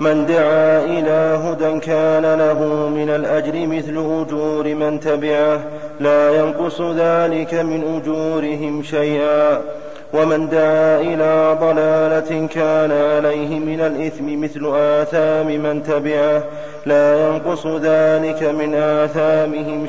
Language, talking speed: Arabic, 105 wpm